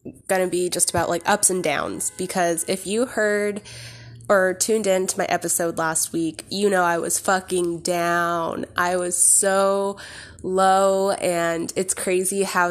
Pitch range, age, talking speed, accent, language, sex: 170-195 Hz, 20-39, 160 wpm, American, English, female